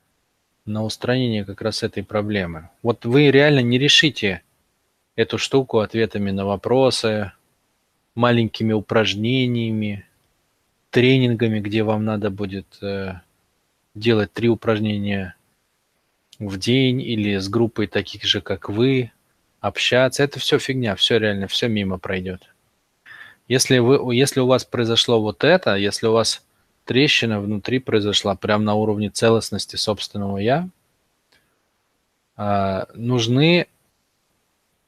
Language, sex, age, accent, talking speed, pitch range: Russian, male, 20-39, native, 110 wpm, 100-120 Hz